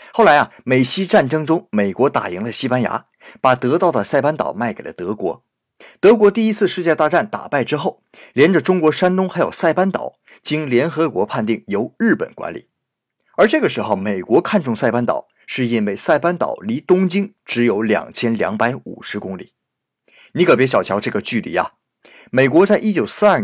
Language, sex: Chinese, male